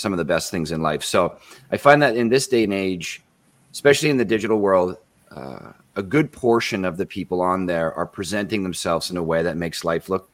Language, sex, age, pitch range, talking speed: English, male, 30-49, 85-110 Hz, 230 wpm